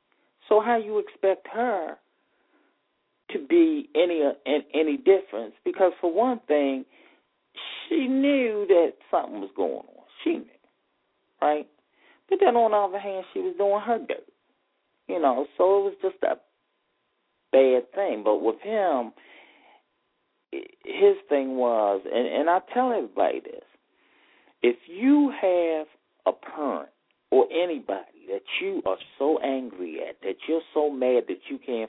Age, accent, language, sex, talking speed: 40-59, American, English, male, 145 wpm